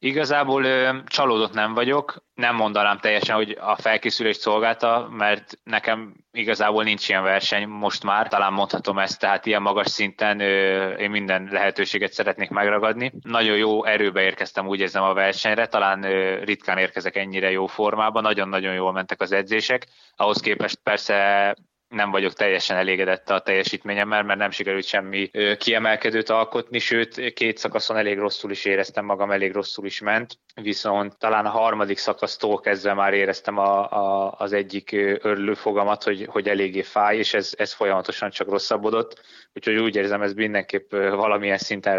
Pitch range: 100-110 Hz